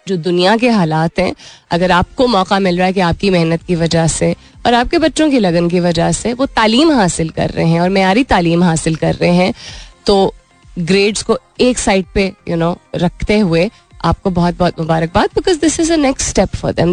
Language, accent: Hindi, native